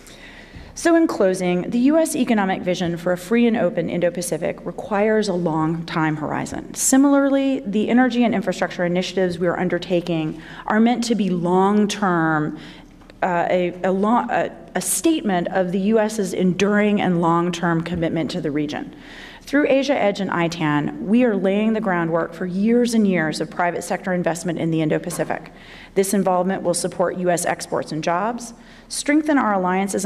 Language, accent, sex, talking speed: English, American, female, 155 wpm